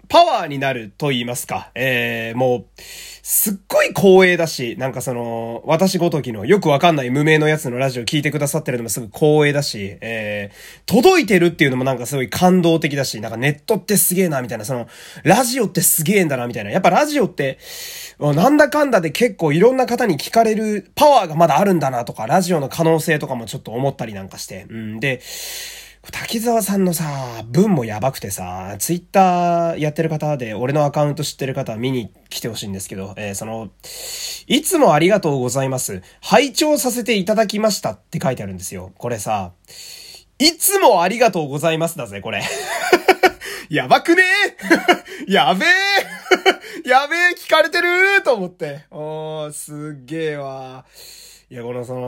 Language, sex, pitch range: Japanese, male, 125-205 Hz